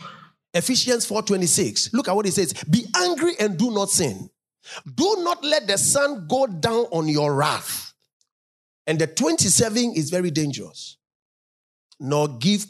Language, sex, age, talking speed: English, male, 40-59, 145 wpm